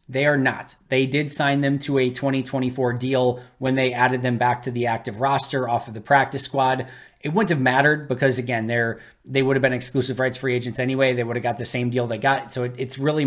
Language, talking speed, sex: English, 245 wpm, male